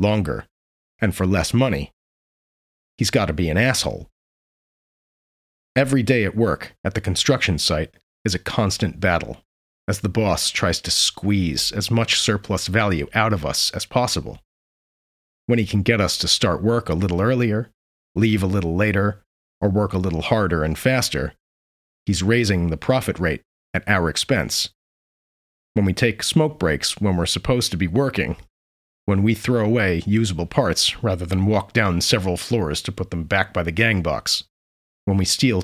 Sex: male